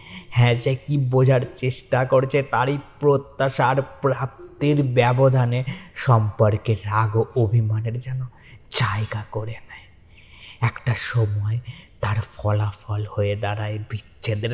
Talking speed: 80 wpm